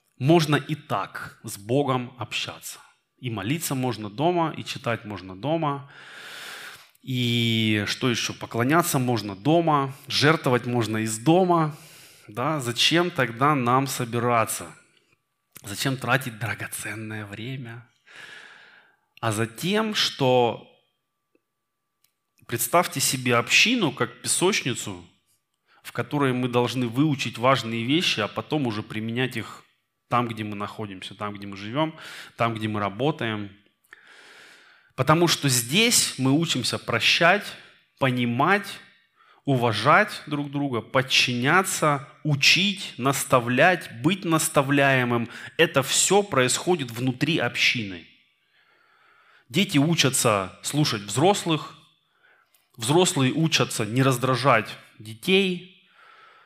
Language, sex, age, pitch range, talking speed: Russian, male, 20-39, 115-155 Hz, 100 wpm